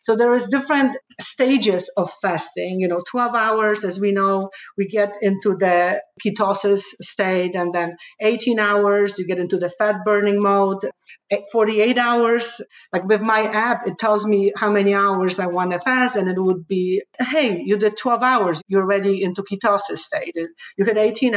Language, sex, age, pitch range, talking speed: English, female, 50-69, 185-215 Hz, 180 wpm